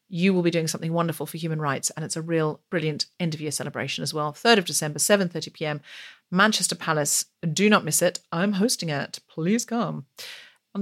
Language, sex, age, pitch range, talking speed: English, female, 40-59, 165-215 Hz, 190 wpm